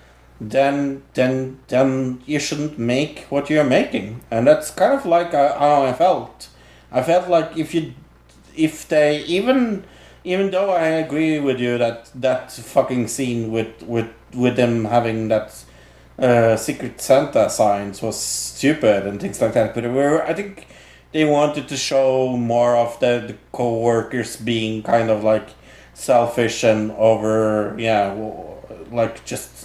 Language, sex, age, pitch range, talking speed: English, male, 50-69, 110-140 Hz, 155 wpm